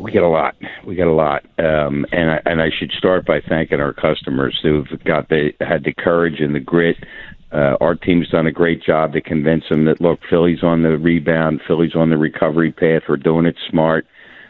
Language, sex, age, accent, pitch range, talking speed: English, male, 50-69, American, 75-80 Hz, 220 wpm